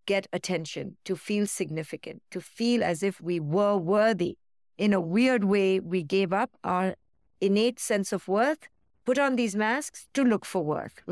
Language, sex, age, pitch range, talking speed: English, female, 50-69, 180-230 Hz, 175 wpm